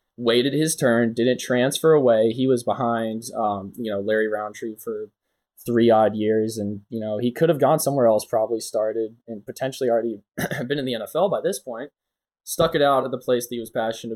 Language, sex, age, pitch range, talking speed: English, male, 10-29, 110-130 Hz, 205 wpm